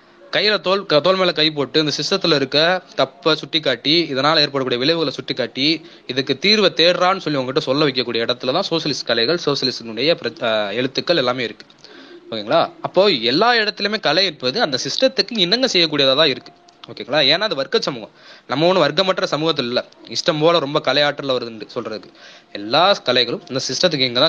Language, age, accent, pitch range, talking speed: Tamil, 20-39, native, 125-170 Hz, 140 wpm